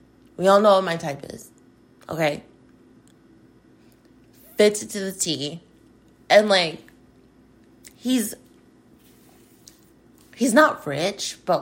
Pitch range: 205-270 Hz